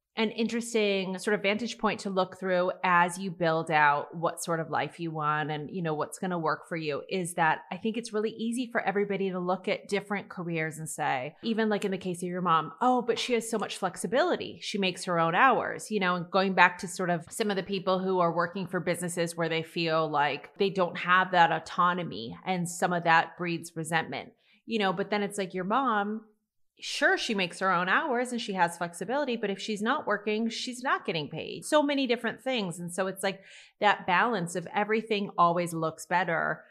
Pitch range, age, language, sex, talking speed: 175-215 Hz, 30-49, English, female, 225 wpm